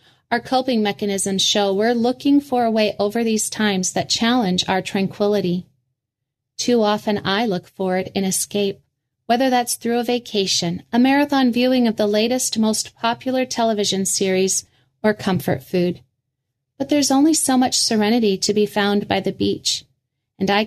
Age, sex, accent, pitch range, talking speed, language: 30-49, female, American, 175-225 Hz, 165 wpm, English